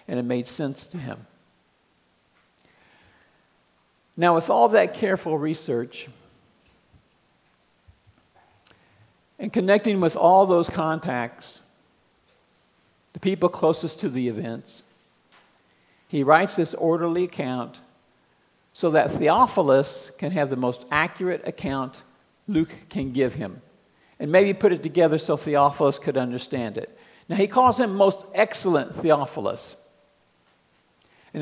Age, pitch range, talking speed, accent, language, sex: 50-69, 140-190 Hz, 115 wpm, American, English, male